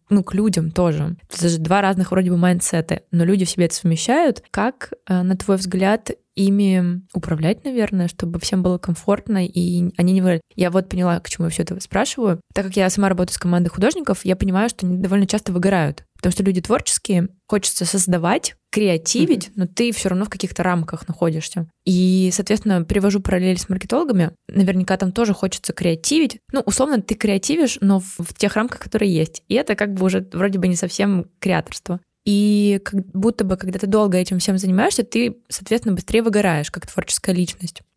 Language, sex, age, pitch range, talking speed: Russian, female, 20-39, 180-200 Hz, 190 wpm